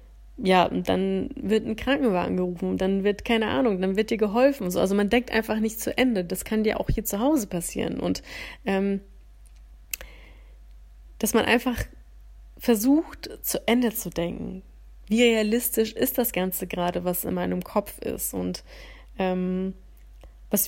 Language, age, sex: German, 30-49, female